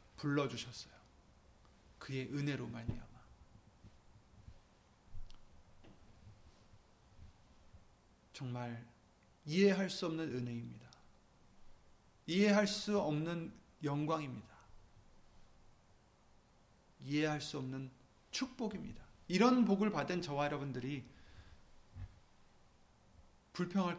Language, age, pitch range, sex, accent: Korean, 40-59, 110-170 Hz, male, native